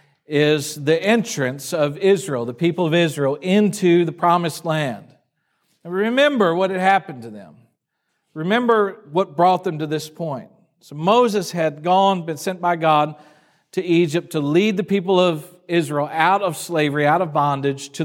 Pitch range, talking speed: 145-180 Hz, 165 wpm